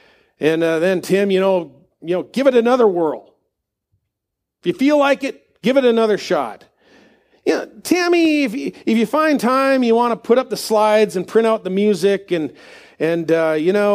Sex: male